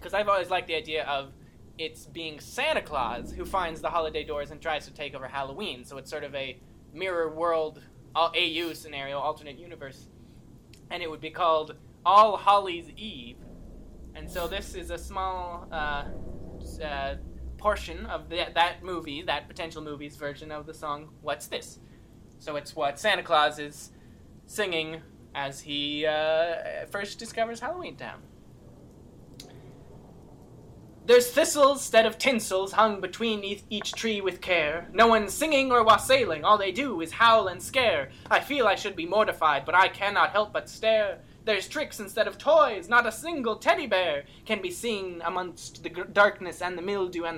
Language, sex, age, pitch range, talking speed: English, male, 20-39, 150-215 Hz, 165 wpm